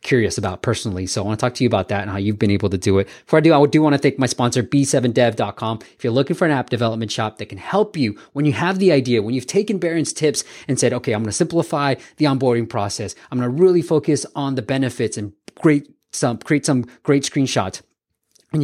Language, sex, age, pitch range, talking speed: English, male, 20-39, 115-150 Hz, 260 wpm